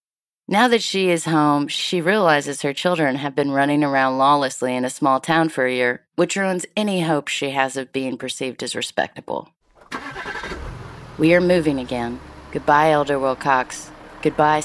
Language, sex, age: English, female, 30-49